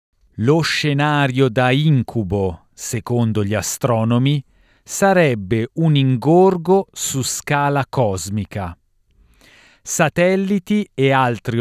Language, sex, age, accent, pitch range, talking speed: Italian, male, 40-59, native, 110-160 Hz, 85 wpm